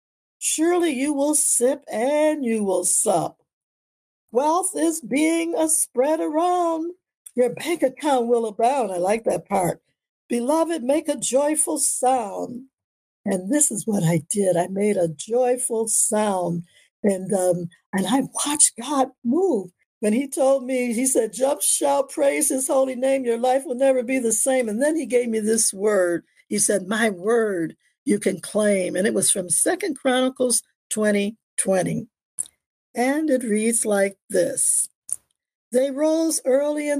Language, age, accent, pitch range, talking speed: English, 60-79, American, 220-285 Hz, 155 wpm